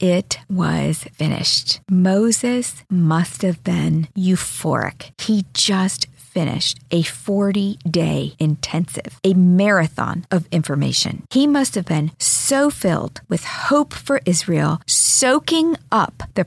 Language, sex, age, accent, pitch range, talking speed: English, female, 50-69, American, 170-250 Hz, 115 wpm